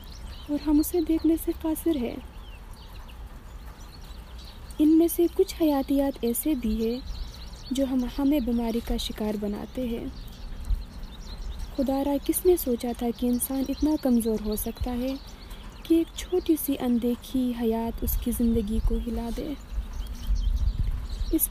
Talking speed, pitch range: 125 wpm, 225-280 Hz